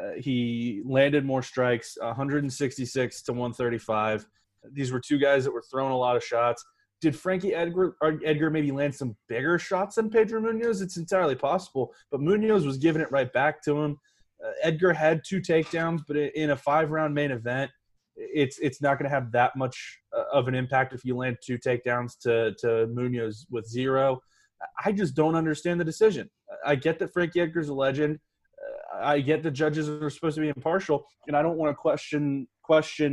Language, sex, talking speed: English, male, 190 wpm